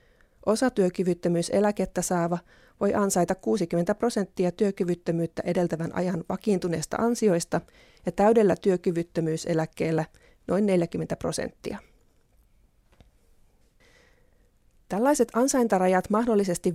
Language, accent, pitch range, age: Finnish, native, 175-210 Hz, 30-49